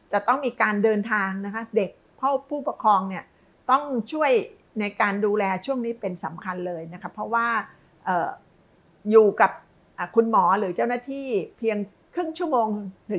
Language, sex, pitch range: Thai, female, 185-235 Hz